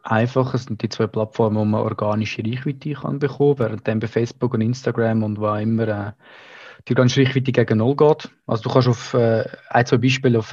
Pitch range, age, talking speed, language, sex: 115-140 Hz, 20-39, 205 wpm, German, male